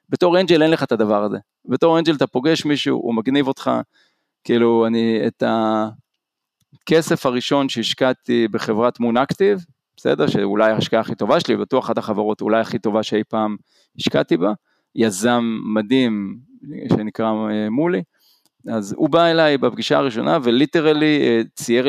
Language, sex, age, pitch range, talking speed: Hebrew, male, 40-59, 110-140 Hz, 140 wpm